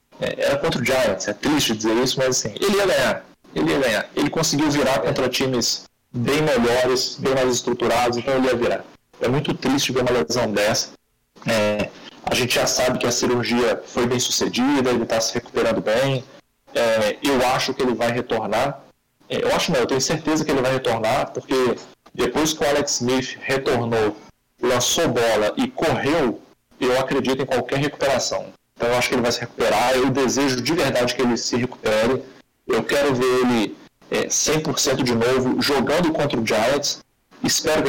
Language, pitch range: Portuguese, 120-135 Hz